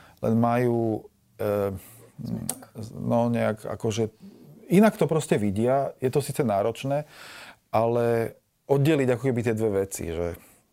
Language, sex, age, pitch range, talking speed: Slovak, male, 40-59, 100-120 Hz, 115 wpm